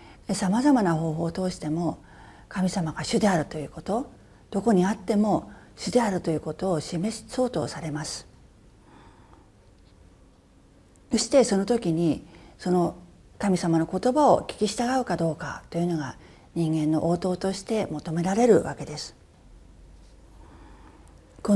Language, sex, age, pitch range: Japanese, female, 40-59, 155-220 Hz